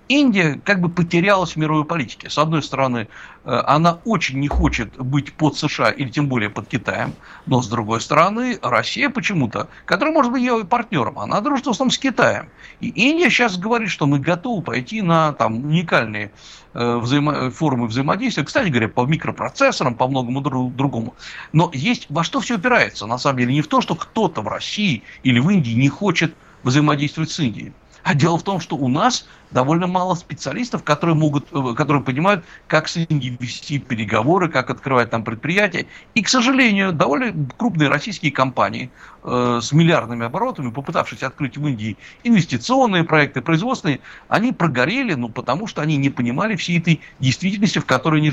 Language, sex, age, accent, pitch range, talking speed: Russian, male, 60-79, native, 130-185 Hz, 170 wpm